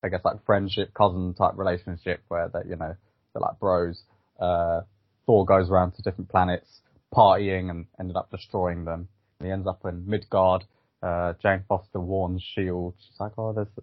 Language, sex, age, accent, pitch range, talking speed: English, male, 20-39, British, 90-105 Hz, 180 wpm